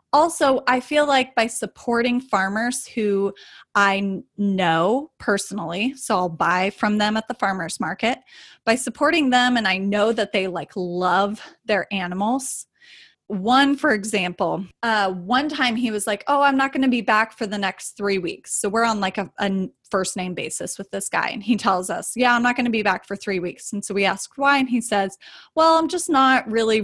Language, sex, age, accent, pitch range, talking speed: English, female, 20-39, American, 195-245 Hz, 205 wpm